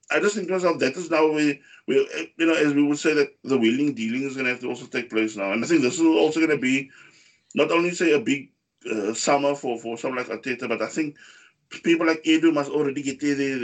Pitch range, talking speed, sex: 120-170 Hz, 260 wpm, male